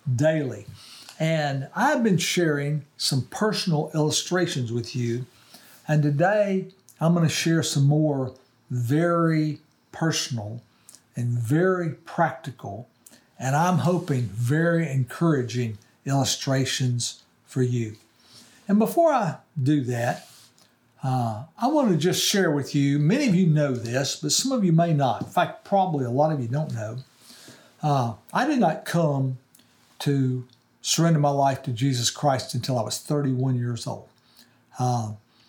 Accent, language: American, English